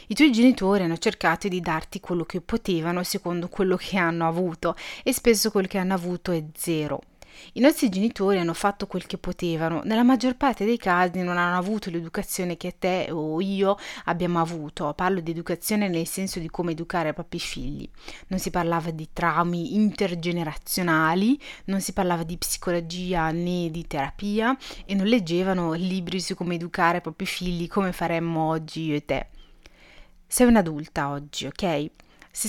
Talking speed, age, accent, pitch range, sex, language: 170 wpm, 30-49, native, 170-205 Hz, female, Italian